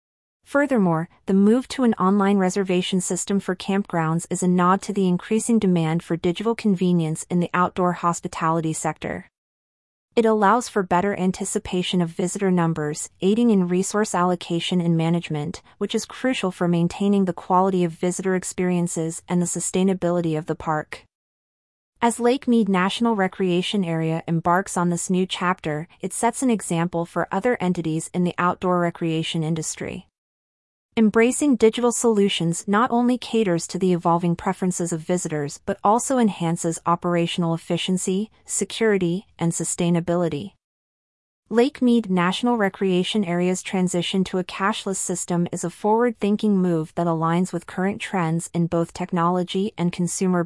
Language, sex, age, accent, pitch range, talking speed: English, female, 30-49, American, 170-200 Hz, 145 wpm